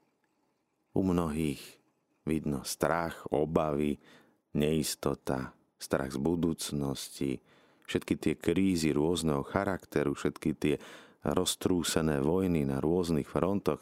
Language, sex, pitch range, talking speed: Slovak, male, 70-90 Hz, 90 wpm